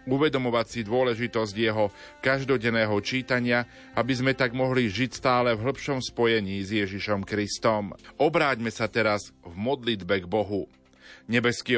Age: 40-59